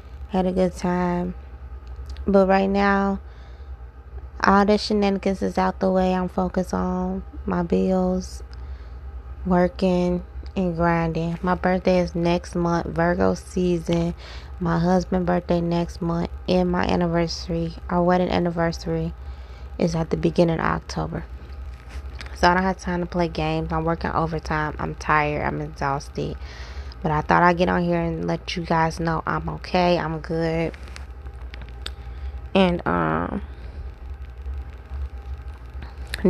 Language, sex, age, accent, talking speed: English, female, 20-39, American, 130 wpm